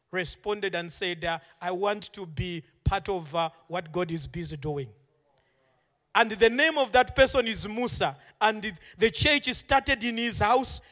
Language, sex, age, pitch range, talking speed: English, male, 40-59, 185-250 Hz, 170 wpm